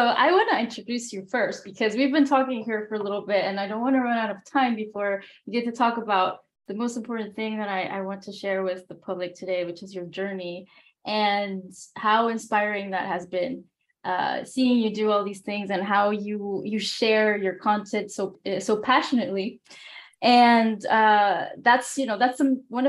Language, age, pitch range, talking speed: English, 10-29, 195-235 Hz, 205 wpm